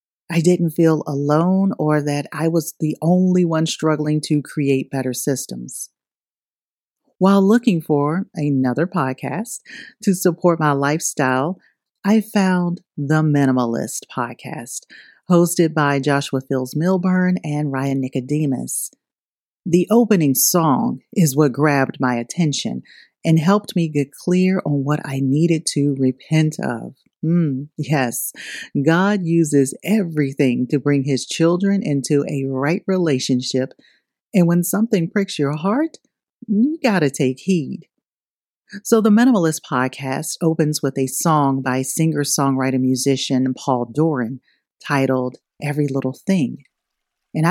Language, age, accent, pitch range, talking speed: English, 40-59, American, 135-180 Hz, 125 wpm